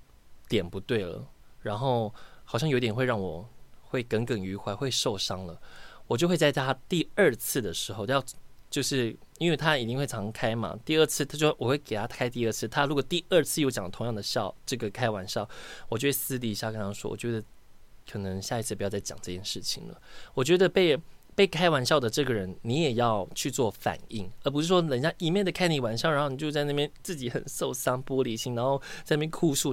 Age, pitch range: 20-39, 110-150 Hz